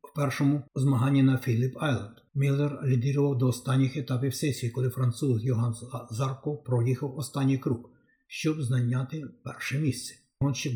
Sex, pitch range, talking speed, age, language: male, 125-140 Hz, 135 wpm, 50-69, Ukrainian